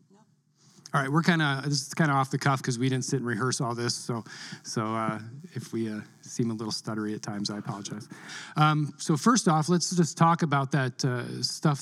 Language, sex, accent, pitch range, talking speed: English, male, American, 120-155 Hz, 230 wpm